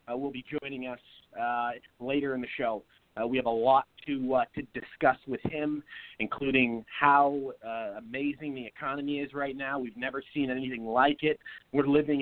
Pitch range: 130-155 Hz